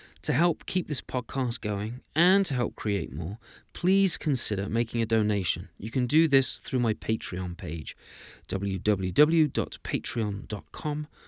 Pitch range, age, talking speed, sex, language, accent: 100-150 Hz, 30-49, 135 wpm, male, English, British